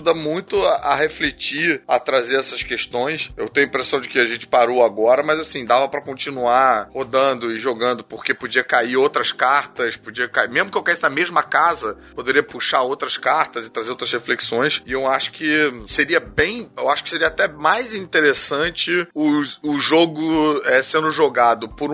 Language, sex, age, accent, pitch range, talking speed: Portuguese, male, 30-49, Brazilian, 125-155 Hz, 185 wpm